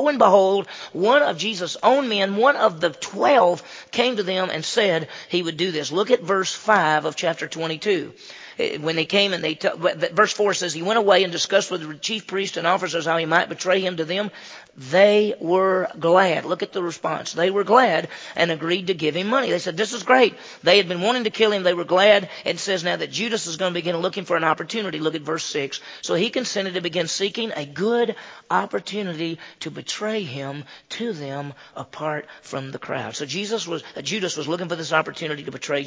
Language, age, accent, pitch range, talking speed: English, 40-59, American, 155-200 Hz, 215 wpm